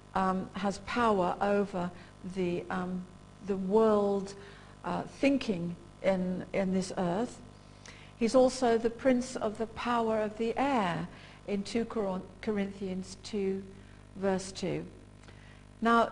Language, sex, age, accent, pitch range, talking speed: English, female, 50-69, British, 190-235 Hz, 120 wpm